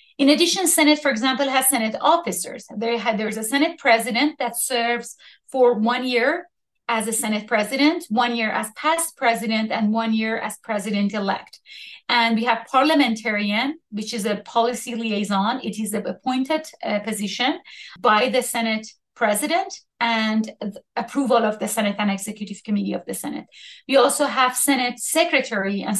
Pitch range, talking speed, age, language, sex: 215-270 Hz, 155 wpm, 30-49, English, female